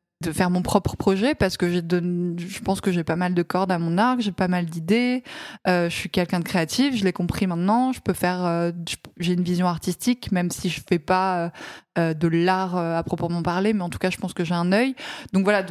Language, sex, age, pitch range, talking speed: French, female, 20-39, 175-200 Hz, 250 wpm